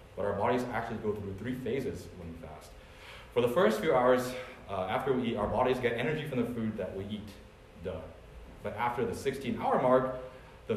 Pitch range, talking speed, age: 95-125 Hz, 205 wpm, 30-49